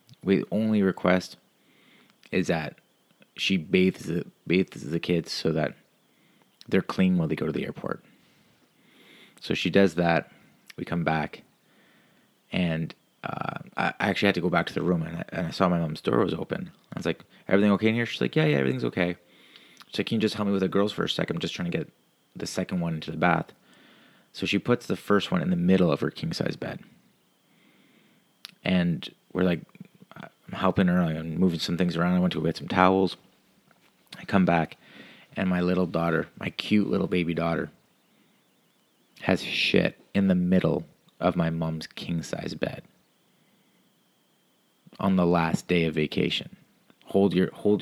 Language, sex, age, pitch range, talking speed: English, male, 30-49, 85-95 Hz, 185 wpm